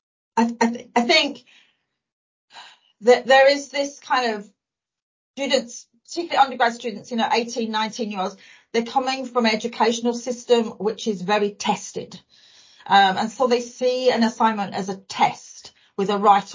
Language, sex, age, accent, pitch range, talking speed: English, female, 40-59, British, 200-250 Hz, 145 wpm